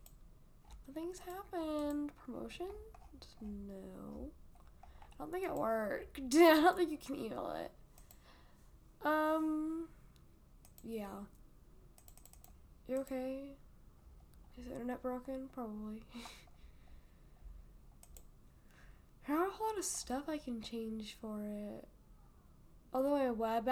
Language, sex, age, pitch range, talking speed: English, female, 10-29, 225-275 Hz, 100 wpm